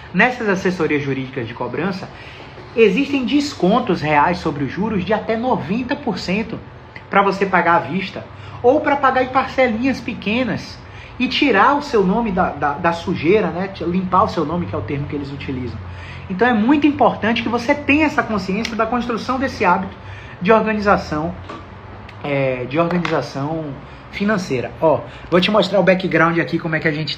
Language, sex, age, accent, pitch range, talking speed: Portuguese, male, 30-49, Brazilian, 145-210 Hz, 170 wpm